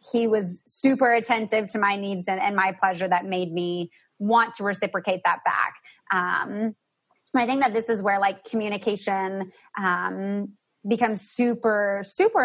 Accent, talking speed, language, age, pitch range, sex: American, 155 wpm, English, 20-39, 195-230 Hz, female